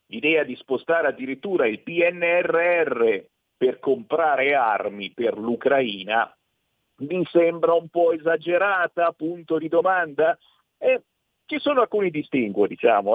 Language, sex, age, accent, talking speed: Italian, male, 50-69, native, 115 wpm